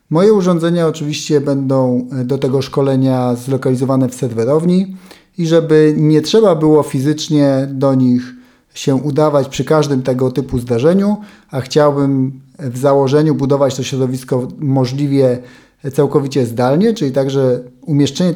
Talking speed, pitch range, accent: 125 wpm, 130-155 Hz, native